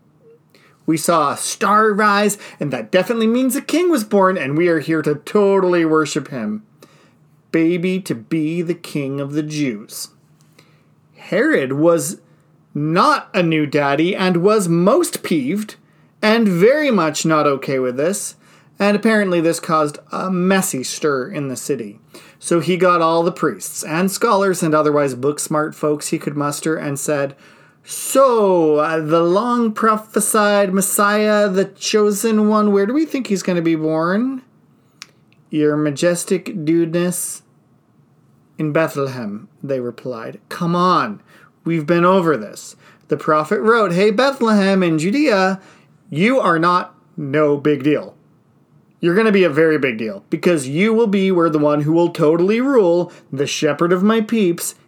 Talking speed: 155 wpm